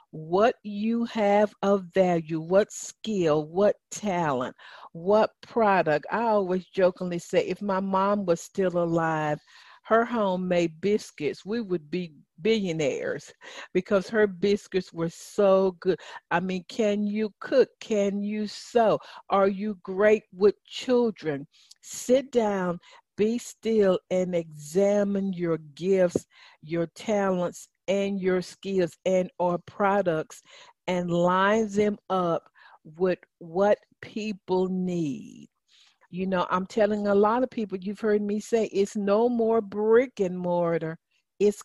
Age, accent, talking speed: 50-69, American, 130 wpm